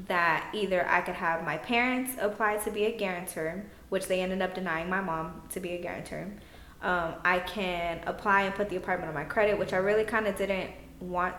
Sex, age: female, 20-39